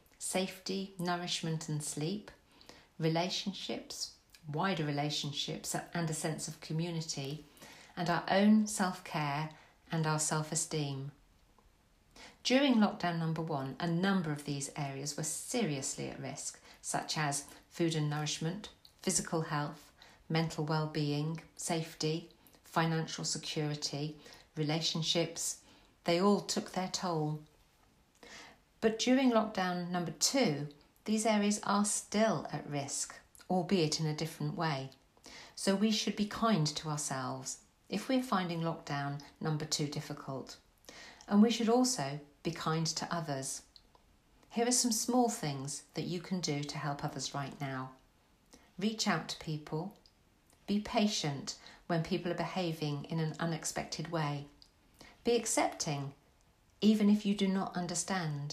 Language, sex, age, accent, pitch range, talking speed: English, female, 50-69, British, 150-190 Hz, 130 wpm